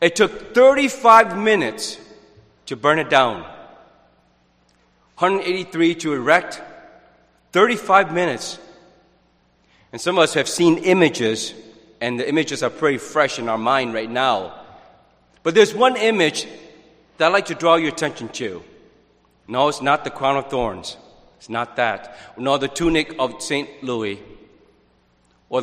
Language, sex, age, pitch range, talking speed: English, male, 40-59, 110-170 Hz, 140 wpm